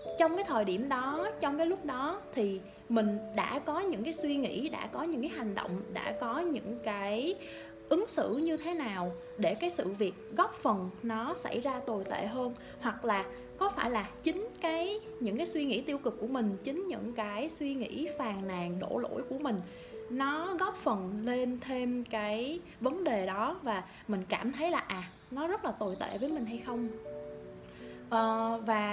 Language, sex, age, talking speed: Vietnamese, female, 20-39, 195 wpm